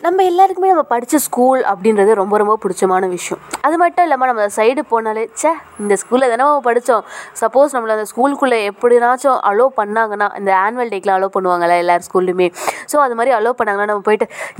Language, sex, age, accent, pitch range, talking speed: Tamil, female, 20-39, native, 190-245 Hz, 180 wpm